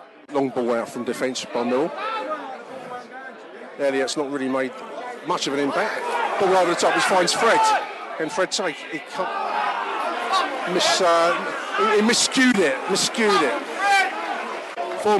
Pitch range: 145-210 Hz